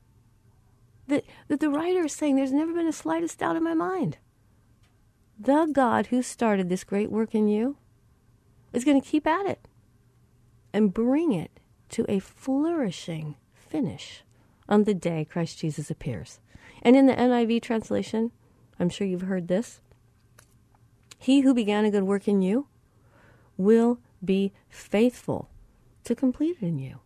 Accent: American